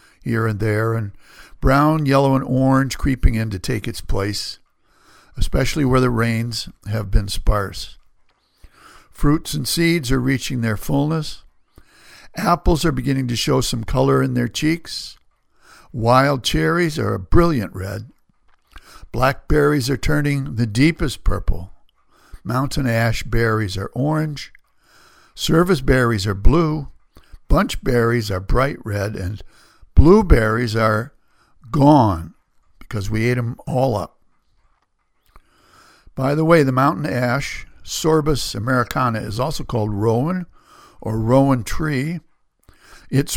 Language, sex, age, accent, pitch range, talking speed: English, male, 60-79, American, 110-145 Hz, 125 wpm